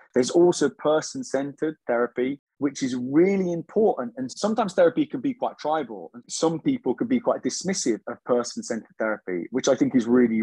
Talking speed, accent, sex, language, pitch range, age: 175 wpm, British, male, English, 120-160 Hz, 20-39